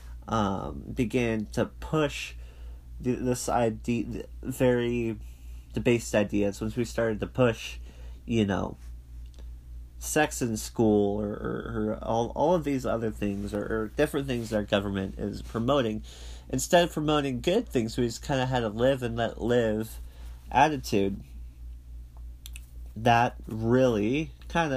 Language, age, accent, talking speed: English, 30-49, American, 140 wpm